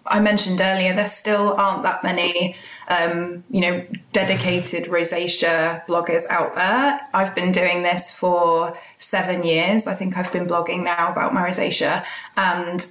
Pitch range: 175-205 Hz